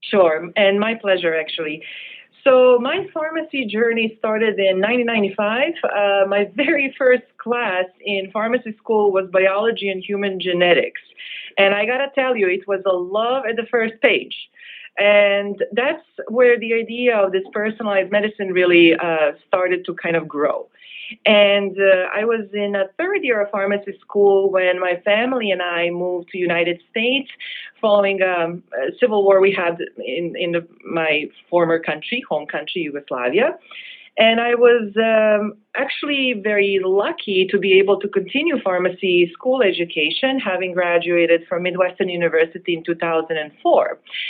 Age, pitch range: 30-49, 185-245 Hz